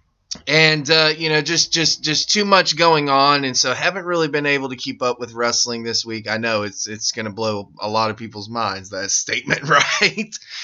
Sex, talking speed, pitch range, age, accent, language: male, 215 wpm, 110-140 Hz, 20-39, American, English